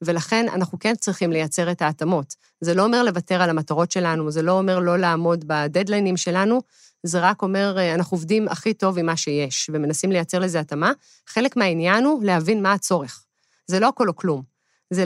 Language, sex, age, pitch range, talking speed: Hebrew, female, 30-49, 165-200 Hz, 185 wpm